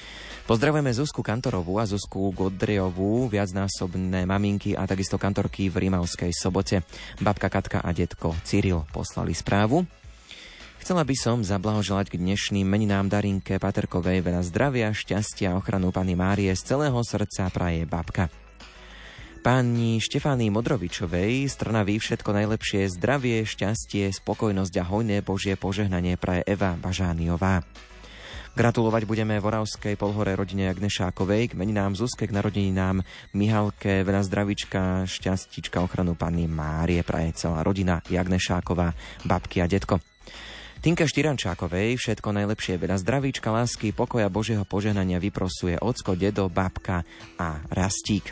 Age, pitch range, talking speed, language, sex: 20-39, 95-110 Hz, 125 wpm, Slovak, male